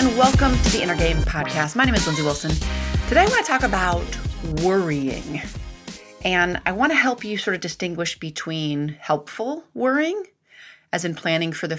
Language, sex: English, female